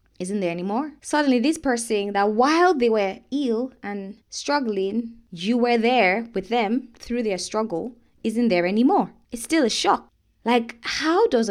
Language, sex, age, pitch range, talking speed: English, female, 20-39, 165-235 Hz, 160 wpm